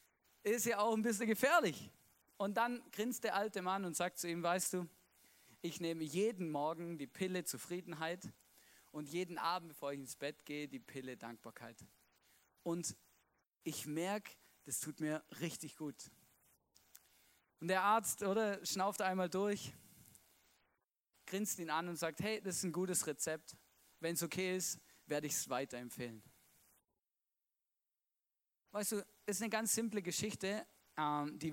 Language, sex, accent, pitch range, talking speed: German, male, German, 145-190 Hz, 150 wpm